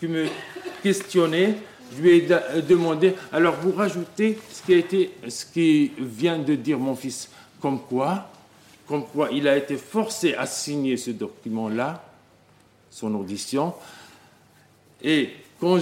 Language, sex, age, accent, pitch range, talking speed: French, male, 50-69, French, 135-180 Hz, 145 wpm